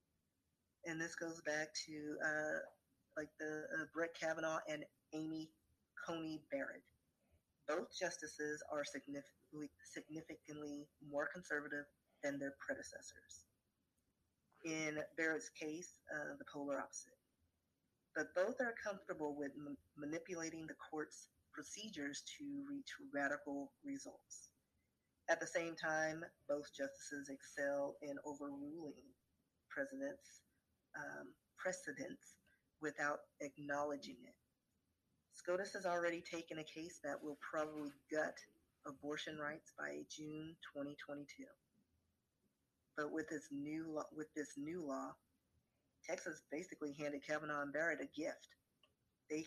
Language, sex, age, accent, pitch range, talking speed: English, female, 30-49, American, 145-160 Hz, 115 wpm